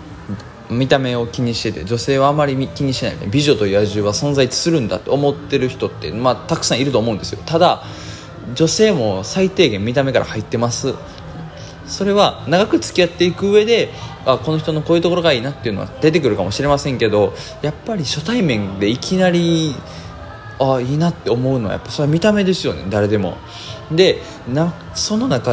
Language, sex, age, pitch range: Japanese, male, 20-39, 110-165 Hz